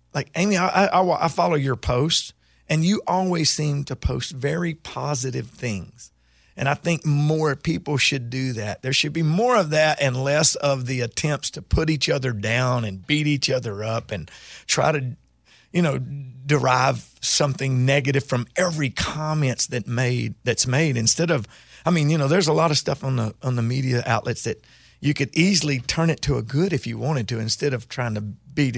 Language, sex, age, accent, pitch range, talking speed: English, male, 40-59, American, 115-155 Hz, 200 wpm